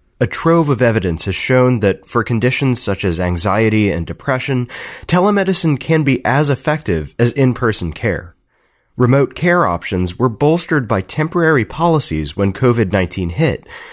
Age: 30-49